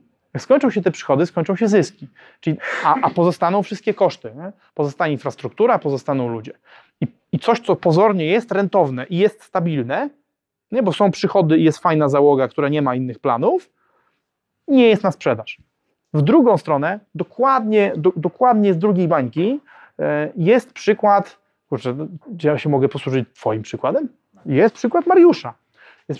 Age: 30-49